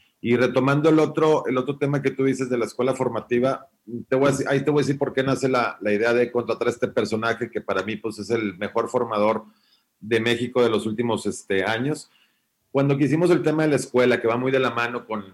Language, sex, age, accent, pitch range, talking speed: Spanish, male, 40-59, Mexican, 110-130 Hz, 240 wpm